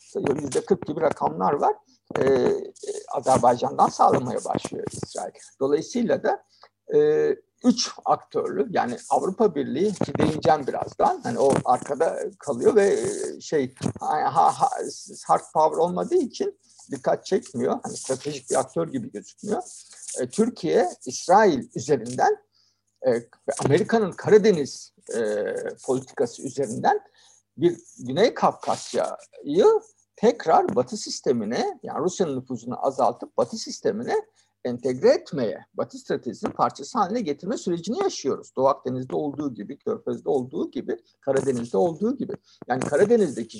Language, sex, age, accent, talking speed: Turkish, male, 60-79, native, 115 wpm